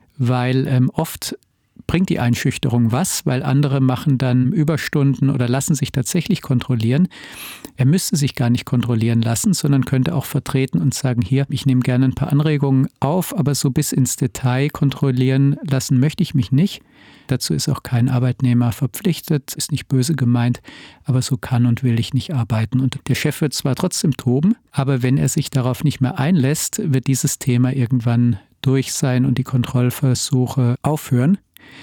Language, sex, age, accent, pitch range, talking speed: German, male, 50-69, German, 125-145 Hz, 175 wpm